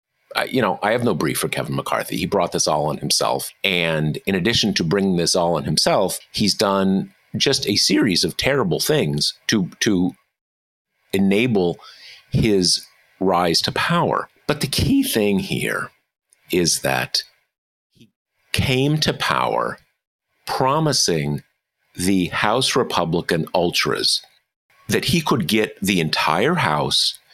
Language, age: English, 50-69